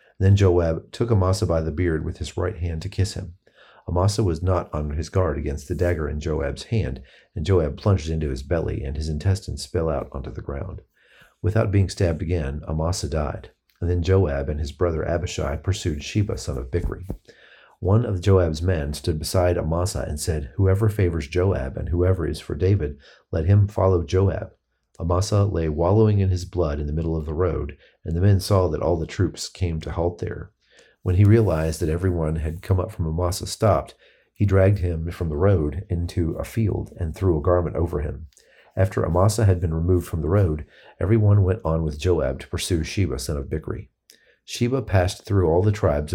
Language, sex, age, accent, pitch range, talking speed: English, male, 40-59, American, 80-95 Hz, 200 wpm